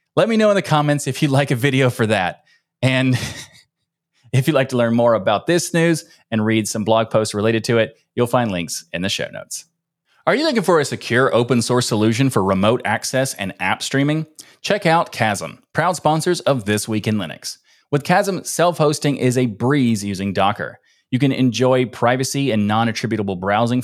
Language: English